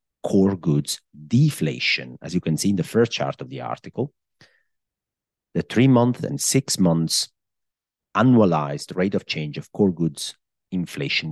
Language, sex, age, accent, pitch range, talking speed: English, male, 40-59, Italian, 80-125 Hz, 150 wpm